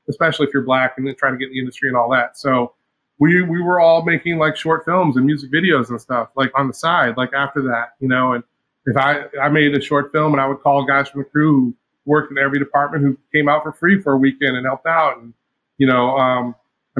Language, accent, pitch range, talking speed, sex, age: English, American, 130-150 Hz, 260 wpm, male, 30-49